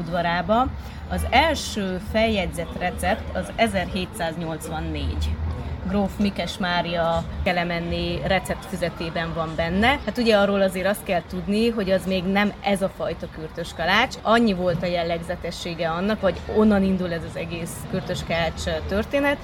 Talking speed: 130 wpm